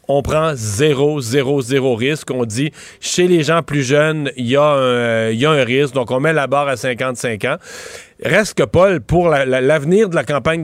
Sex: male